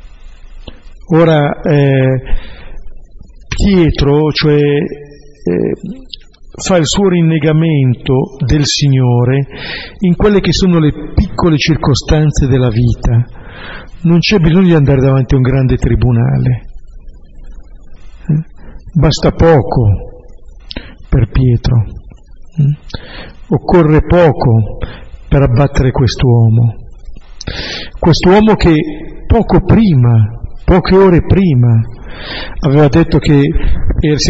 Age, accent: 50-69, native